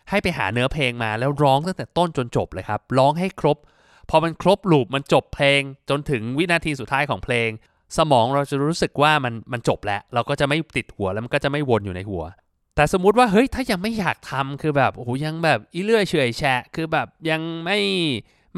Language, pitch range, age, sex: Thai, 120-170 Hz, 20-39, male